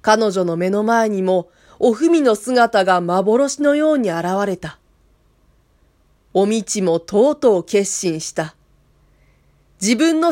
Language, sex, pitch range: Japanese, female, 185-245 Hz